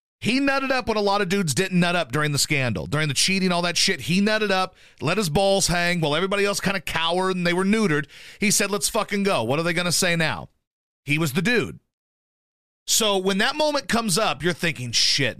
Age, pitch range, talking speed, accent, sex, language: 40-59, 145-200 Hz, 245 wpm, American, male, English